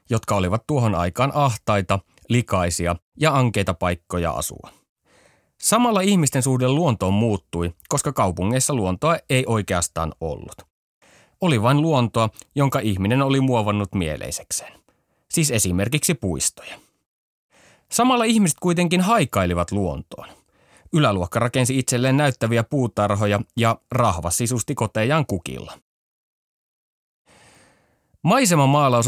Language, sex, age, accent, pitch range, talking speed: Finnish, male, 30-49, native, 100-140 Hz, 100 wpm